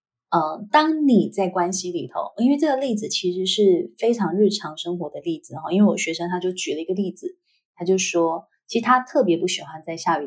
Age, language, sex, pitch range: 20-39, Chinese, female, 175-235 Hz